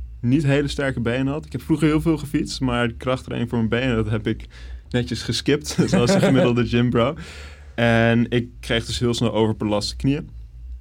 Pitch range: 100-115 Hz